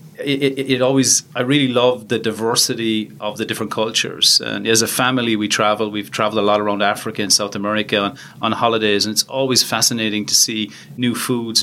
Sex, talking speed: male, 195 wpm